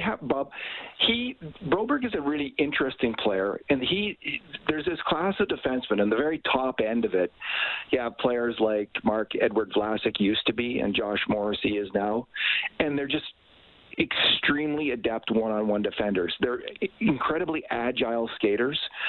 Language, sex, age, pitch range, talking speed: English, male, 50-69, 110-150 Hz, 155 wpm